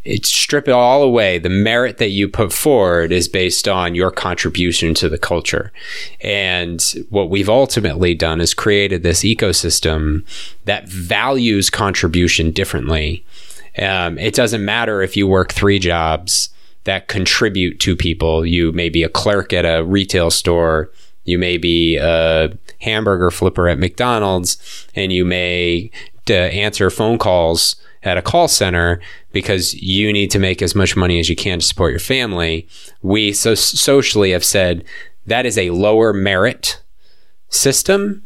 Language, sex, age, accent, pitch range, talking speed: English, male, 20-39, American, 85-105 Hz, 155 wpm